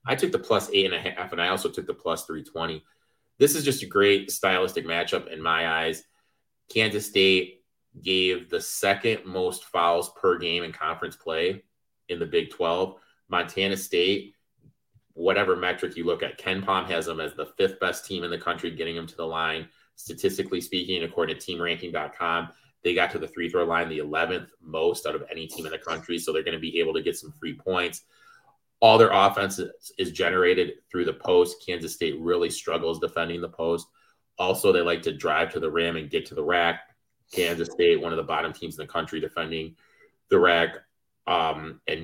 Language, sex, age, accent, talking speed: English, male, 30-49, American, 200 wpm